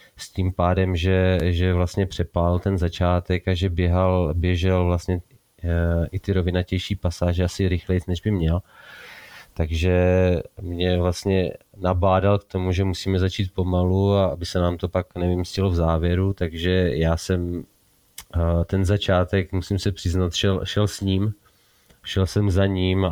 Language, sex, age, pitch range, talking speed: Slovak, male, 20-39, 90-100 Hz, 150 wpm